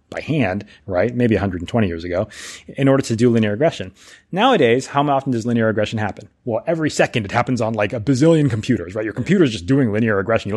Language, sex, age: English, male, 30-49